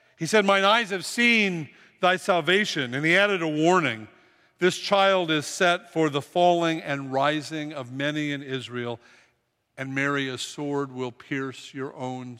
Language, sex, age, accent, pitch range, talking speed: English, male, 50-69, American, 130-185 Hz, 165 wpm